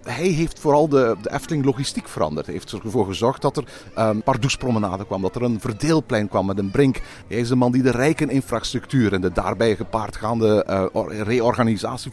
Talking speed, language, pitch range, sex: 200 wpm, Dutch, 110-150 Hz, male